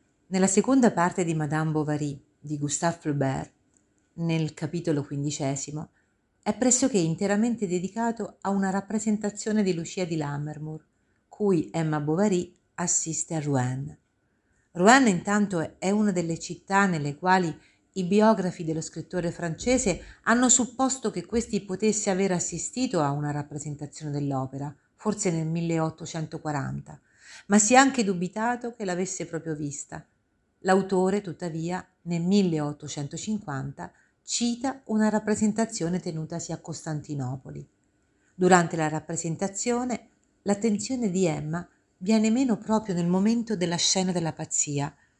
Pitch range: 155-200 Hz